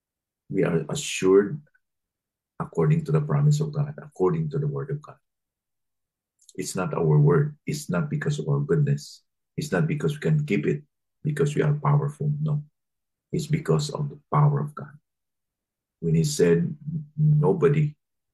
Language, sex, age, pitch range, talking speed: English, male, 40-59, 140-155 Hz, 155 wpm